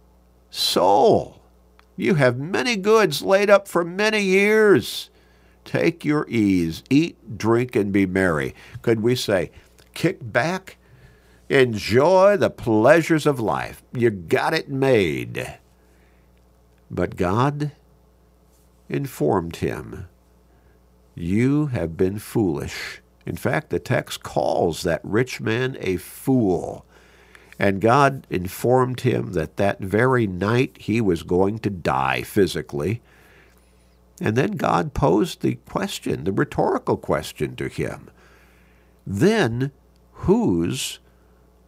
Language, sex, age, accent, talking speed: English, male, 50-69, American, 110 wpm